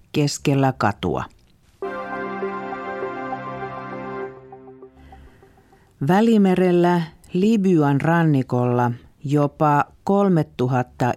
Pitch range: 120-150 Hz